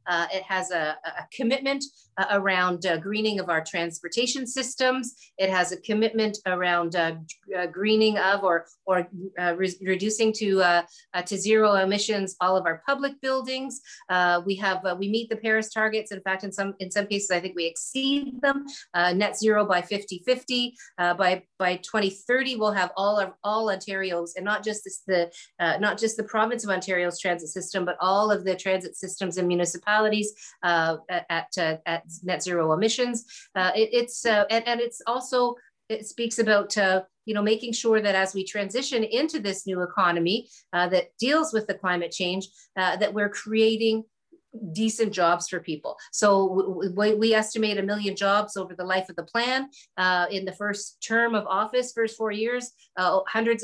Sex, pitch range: female, 180-220 Hz